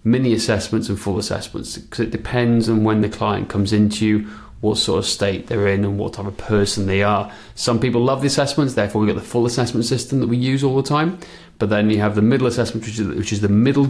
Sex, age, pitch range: male, 30-49, 110-130 Hz